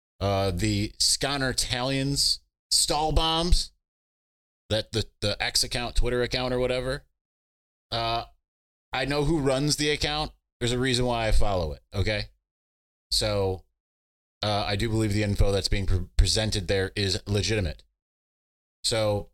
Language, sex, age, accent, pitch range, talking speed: English, male, 30-49, American, 90-115 Hz, 140 wpm